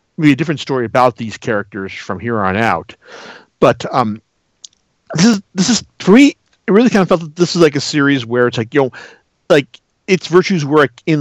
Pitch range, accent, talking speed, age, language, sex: 120-165 Hz, American, 215 wpm, 50-69, English, male